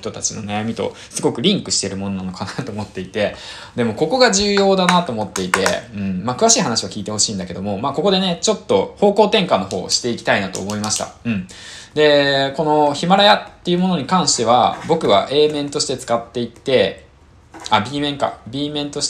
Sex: male